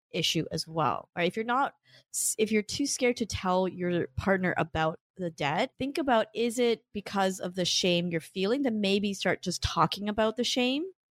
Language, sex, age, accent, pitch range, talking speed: English, female, 20-39, American, 160-205 Hz, 195 wpm